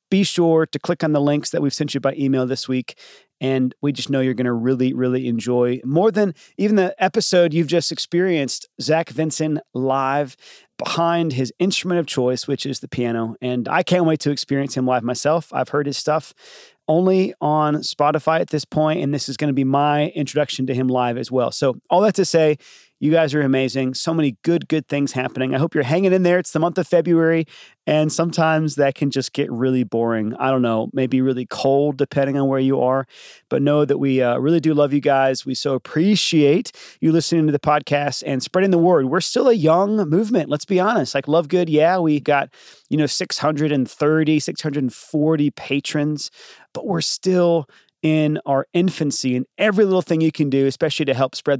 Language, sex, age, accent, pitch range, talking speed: English, male, 30-49, American, 135-165 Hz, 210 wpm